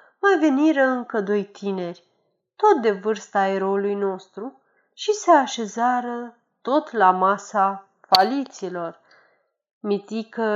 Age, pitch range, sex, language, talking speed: 30-49, 200-295 Hz, female, Romanian, 100 wpm